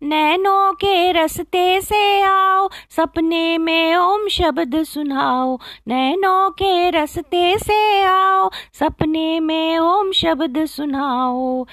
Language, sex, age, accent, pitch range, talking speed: Hindi, female, 30-49, native, 260-355 Hz, 100 wpm